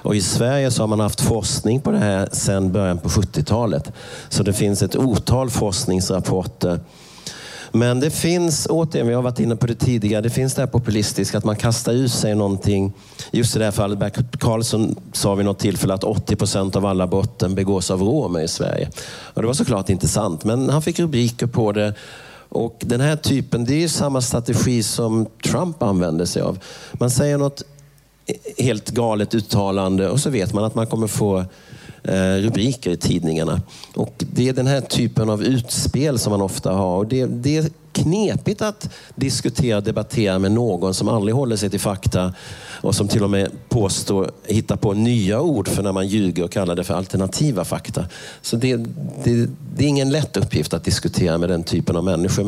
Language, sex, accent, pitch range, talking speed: Czech, male, Swedish, 100-130 Hz, 190 wpm